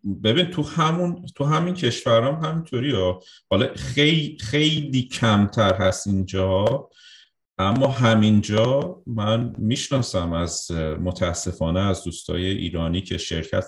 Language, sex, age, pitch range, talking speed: Persian, male, 30-49, 85-115 Hz, 105 wpm